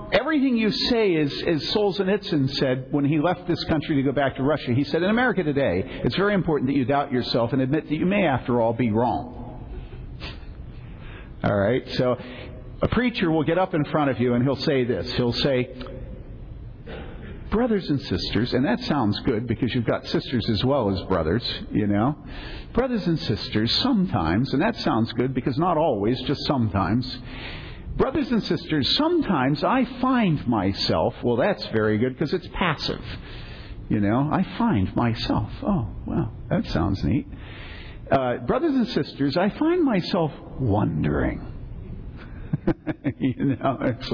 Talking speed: 165 wpm